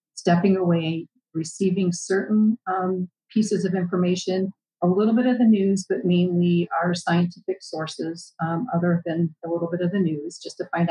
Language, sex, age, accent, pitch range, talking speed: English, female, 40-59, American, 165-185 Hz, 170 wpm